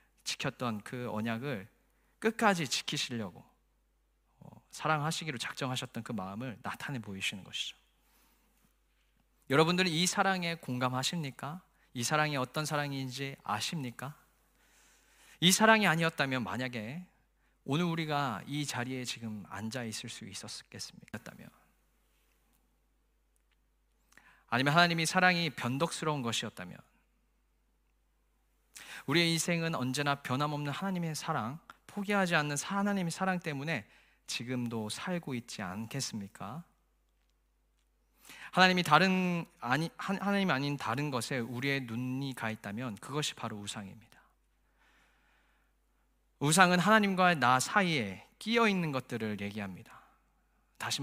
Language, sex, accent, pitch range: Korean, male, native, 120-165 Hz